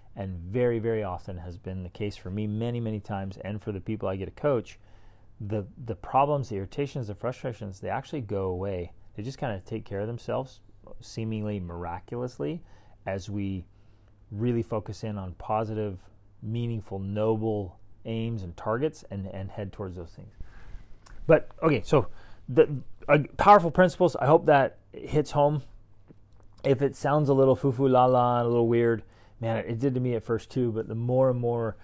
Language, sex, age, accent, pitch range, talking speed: English, male, 30-49, American, 100-120 Hz, 175 wpm